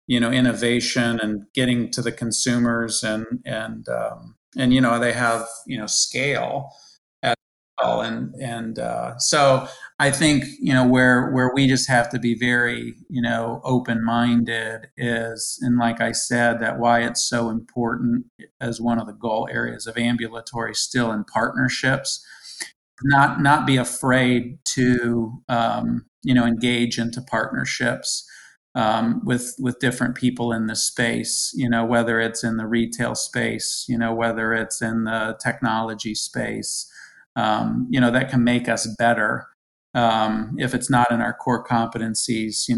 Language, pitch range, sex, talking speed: English, 115-125 Hz, male, 160 wpm